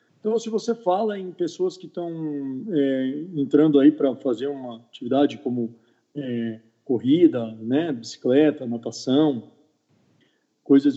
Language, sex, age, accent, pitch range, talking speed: Portuguese, male, 40-59, Brazilian, 135-220 Hz, 120 wpm